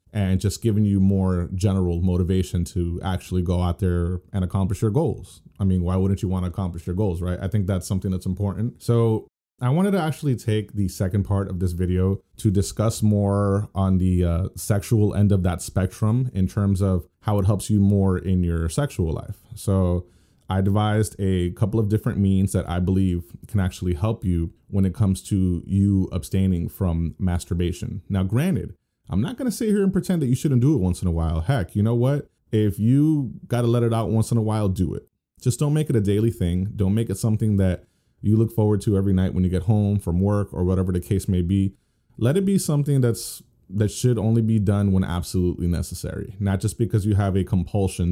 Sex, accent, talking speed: male, American, 220 wpm